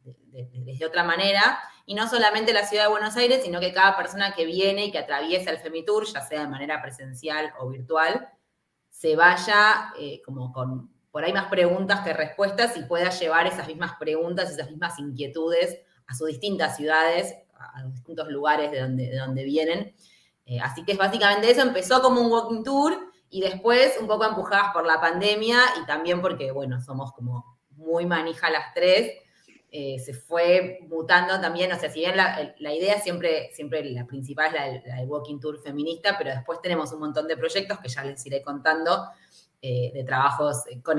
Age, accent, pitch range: 20-39, Argentinian, 145-195 Hz